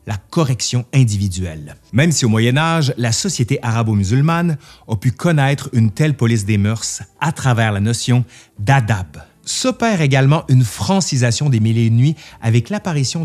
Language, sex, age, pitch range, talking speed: French, male, 30-49, 110-155 Hz, 160 wpm